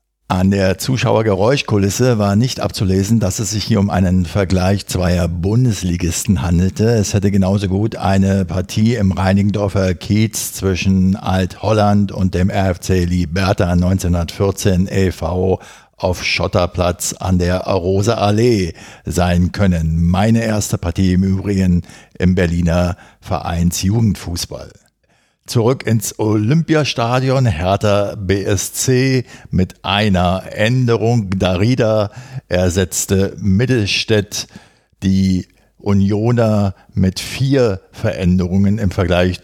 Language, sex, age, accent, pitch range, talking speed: German, male, 60-79, German, 95-110 Hz, 100 wpm